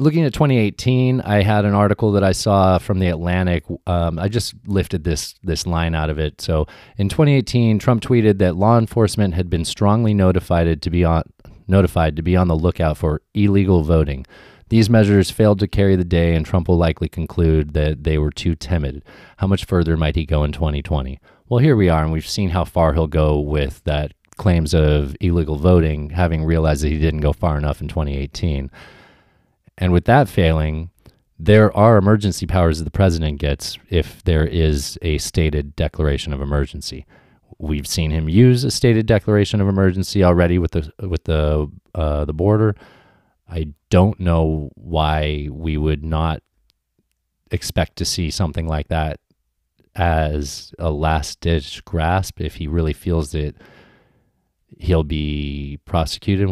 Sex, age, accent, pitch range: male, 30-49, American, 75-100 Hz